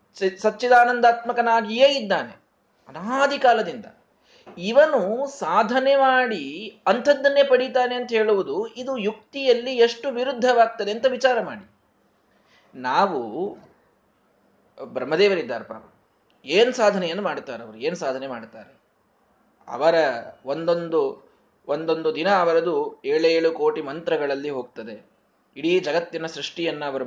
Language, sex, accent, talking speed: Kannada, male, native, 90 wpm